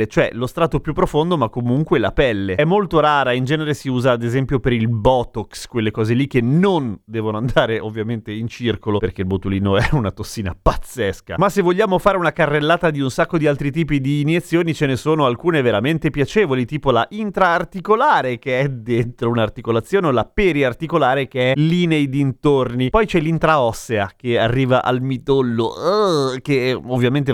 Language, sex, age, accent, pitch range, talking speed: Italian, male, 30-49, native, 120-165 Hz, 180 wpm